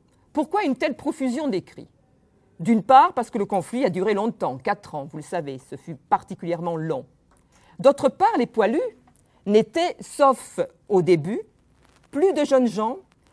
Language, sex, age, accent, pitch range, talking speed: French, female, 50-69, French, 200-270 Hz, 160 wpm